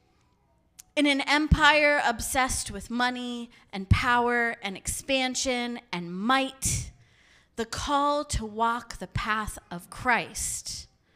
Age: 30-49